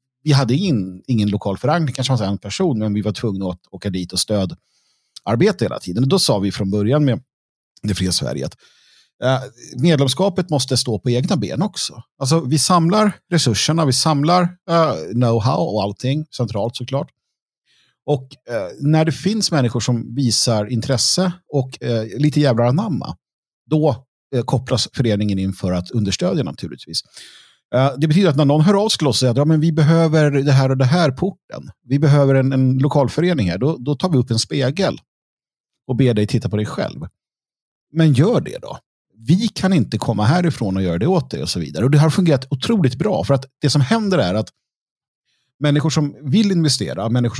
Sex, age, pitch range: male, 50-69, 115-155 Hz